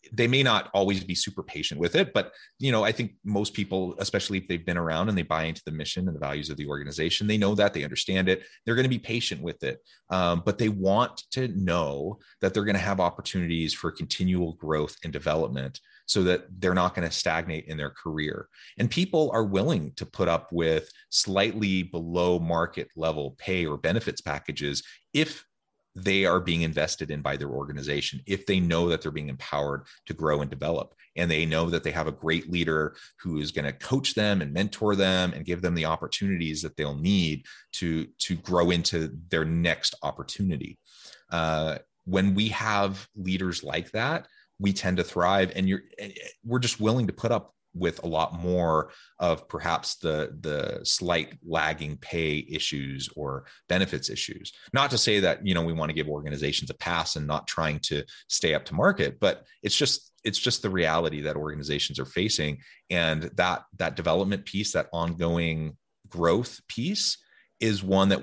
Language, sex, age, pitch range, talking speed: English, male, 30-49, 80-100 Hz, 195 wpm